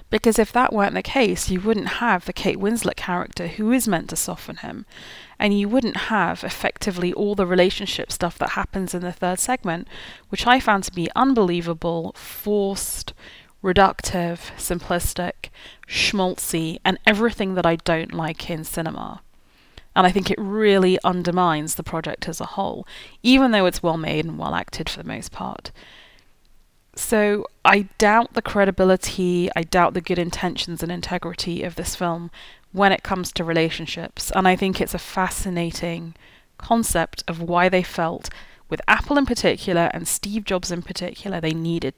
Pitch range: 170-205 Hz